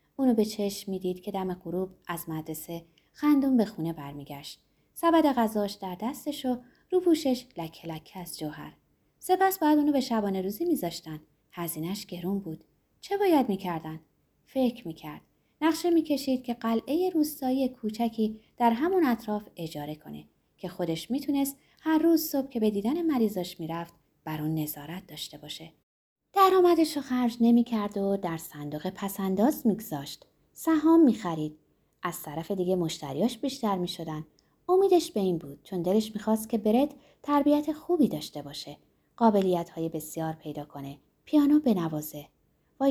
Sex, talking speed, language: female, 145 wpm, Persian